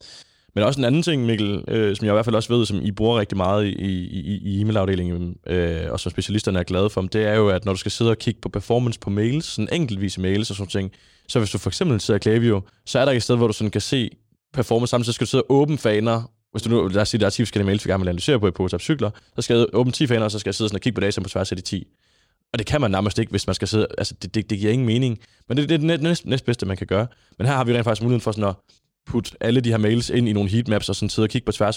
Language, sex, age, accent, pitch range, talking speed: Danish, male, 20-39, native, 100-120 Hz, 320 wpm